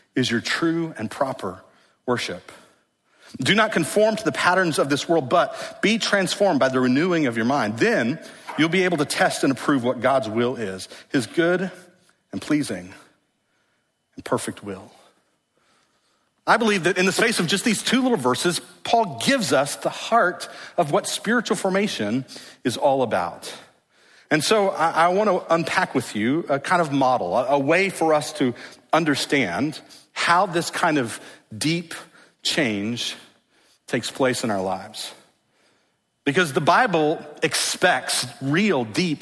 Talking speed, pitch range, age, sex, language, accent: 160 wpm, 130-195 Hz, 40-59, male, English, American